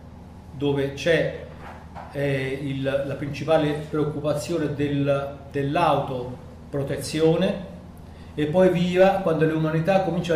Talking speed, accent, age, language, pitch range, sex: 95 wpm, native, 40-59, Italian, 140-170 Hz, male